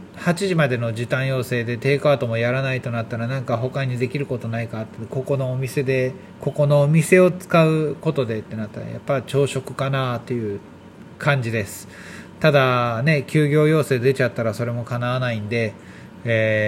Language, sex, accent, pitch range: Japanese, male, native, 115-165 Hz